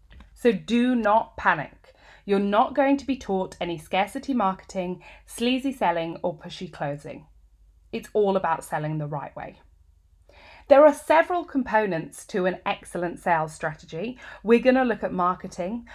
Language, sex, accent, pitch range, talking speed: English, female, British, 175-230 Hz, 150 wpm